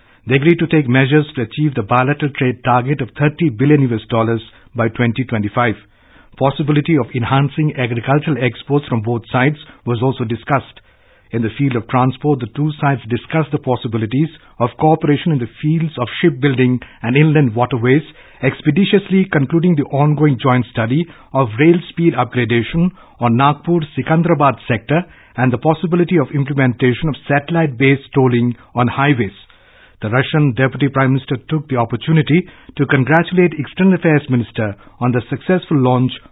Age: 50-69